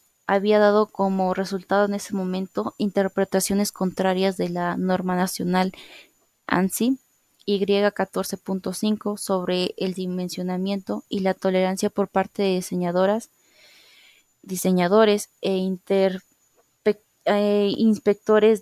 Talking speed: 95 wpm